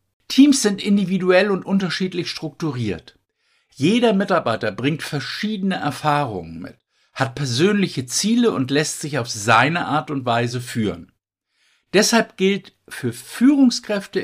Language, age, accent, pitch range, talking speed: German, 60-79, German, 120-190 Hz, 120 wpm